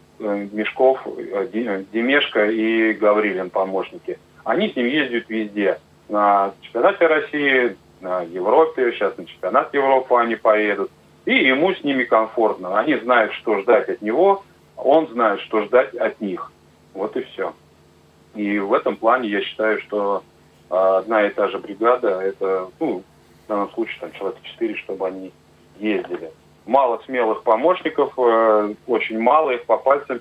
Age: 30-49